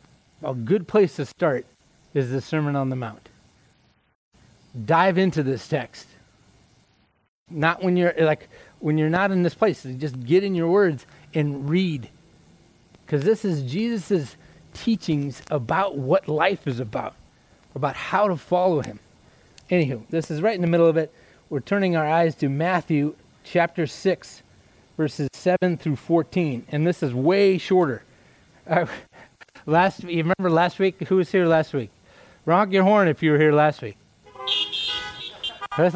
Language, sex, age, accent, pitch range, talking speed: English, male, 30-49, American, 145-185 Hz, 155 wpm